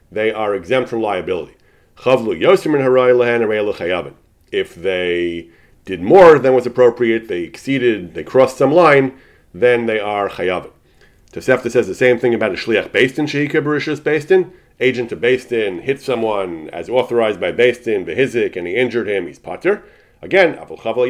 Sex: male